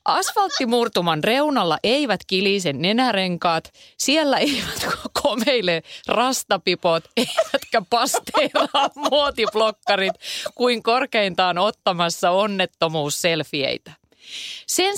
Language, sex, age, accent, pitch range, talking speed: Finnish, female, 30-49, native, 165-240 Hz, 70 wpm